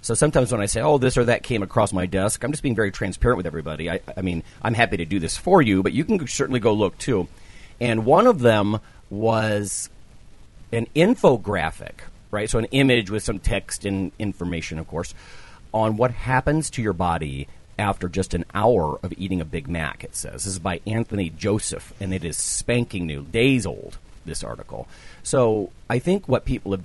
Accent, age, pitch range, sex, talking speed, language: American, 40-59, 90-115 Hz, male, 205 wpm, English